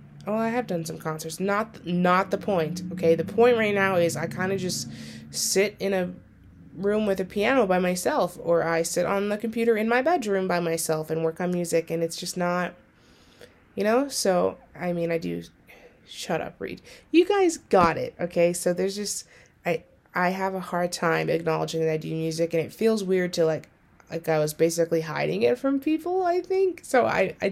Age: 20-39